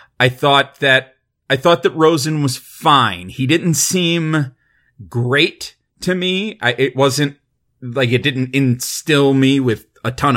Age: 30-49